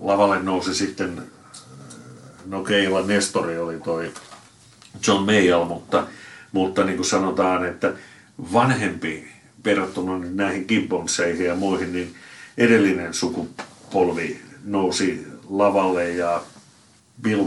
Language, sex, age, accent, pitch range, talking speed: Finnish, male, 60-79, native, 85-95 Hz, 100 wpm